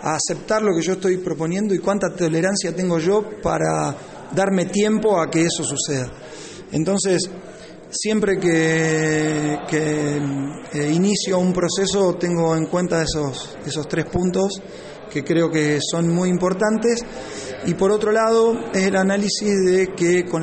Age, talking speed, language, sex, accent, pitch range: 20-39, 145 wpm, Spanish, male, Argentinian, 160-185 Hz